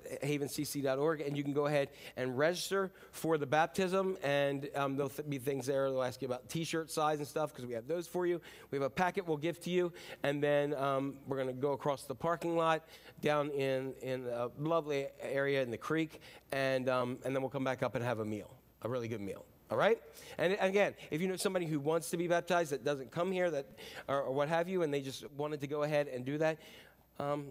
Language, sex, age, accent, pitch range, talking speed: English, male, 40-59, American, 145-195 Hz, 240 wpm